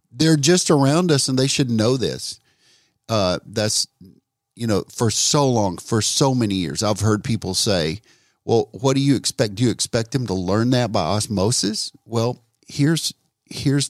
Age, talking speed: 50-69, 175 wpm